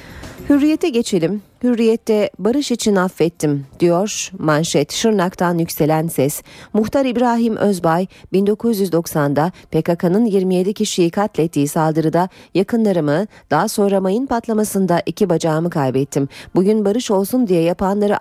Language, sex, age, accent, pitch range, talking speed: Turkish, female, 40-59, native, 160-215 Hz, 105 wpm